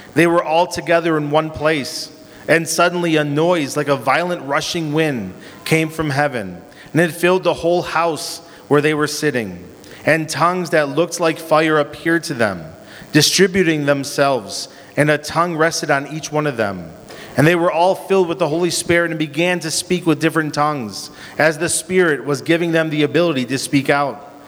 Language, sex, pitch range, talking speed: English, male, 145-170 Hz, 185 wpm